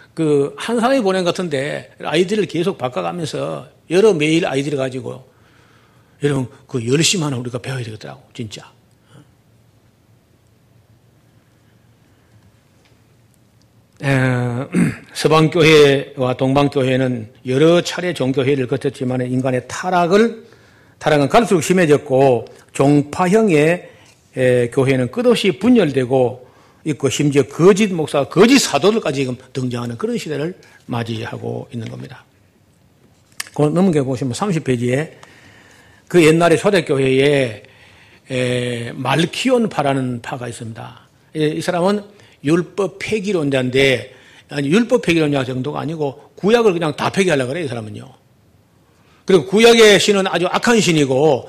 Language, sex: Korean, male